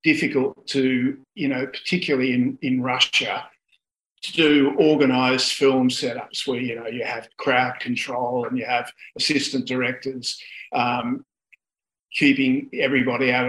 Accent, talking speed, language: Australian, 130 wpm, English